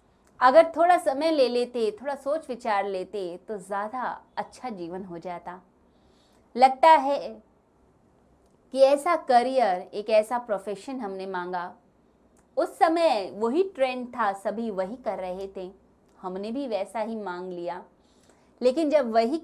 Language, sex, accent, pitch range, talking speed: Hindi, female, native, 195-270 Hz, 135 wpm